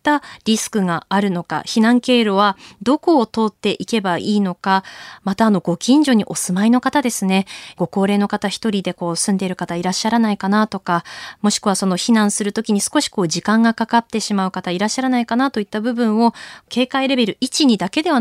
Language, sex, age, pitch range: Japanese, female, 20-39, 195-270 Hz